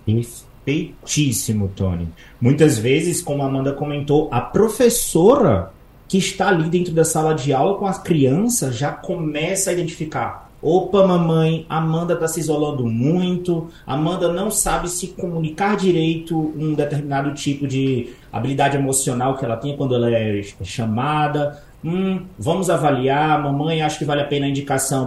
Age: 30-49